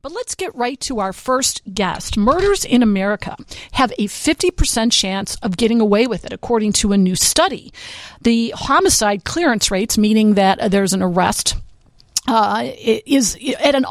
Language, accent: English, American